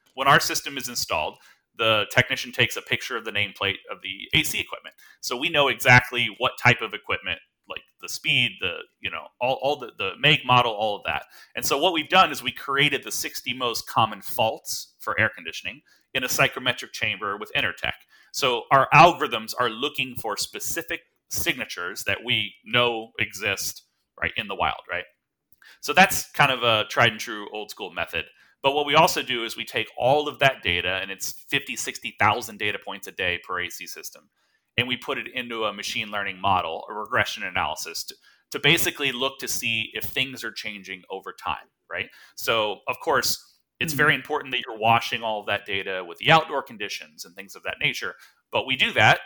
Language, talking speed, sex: English, 200 wpm, male